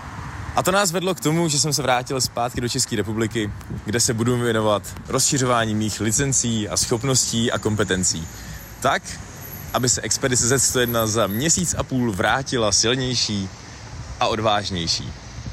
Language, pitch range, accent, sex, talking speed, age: Czech, 105-125 Hz, native, male, 145 wpm, 20-39